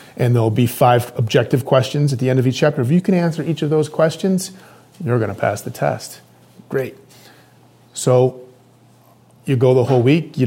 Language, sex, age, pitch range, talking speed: English, male, 30-49, 120-155 Hz, 195 wpm